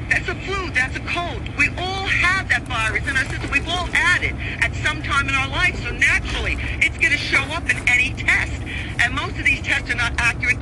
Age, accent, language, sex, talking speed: 50-69, American, English, female, 230 wpm